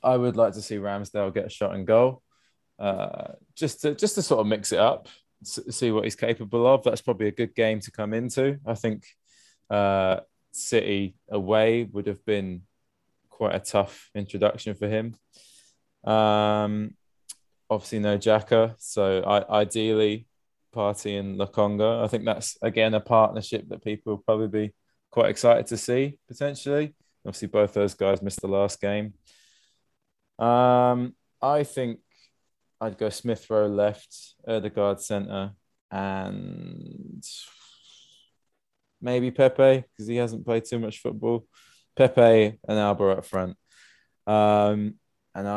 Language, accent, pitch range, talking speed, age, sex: English, British, 100-120 Hz, 145 wpm, 20-39, male